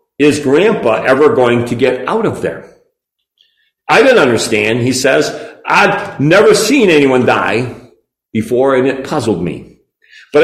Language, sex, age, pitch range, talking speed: English, male, 50-69, 130-170 Hz, 145 wpm